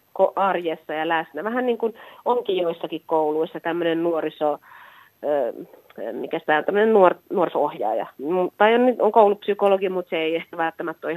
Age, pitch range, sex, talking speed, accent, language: 30-49, 160-195 Hz, female, 110 wpm, native, Finnish